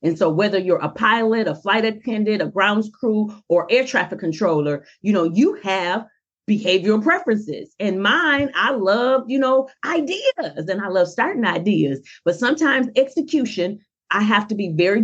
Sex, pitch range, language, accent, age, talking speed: female, 175-245 Hz, English, American, 40-59, 170 wpm